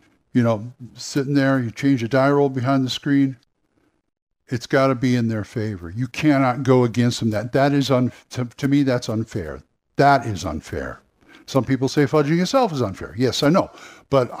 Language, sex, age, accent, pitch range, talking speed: English, male, 60-79, American, 120-150 Hz, 195 wpm